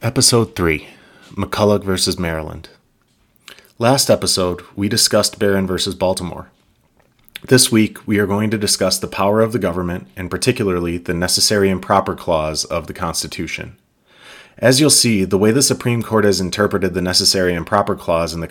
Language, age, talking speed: English, 30-49, 165 wpm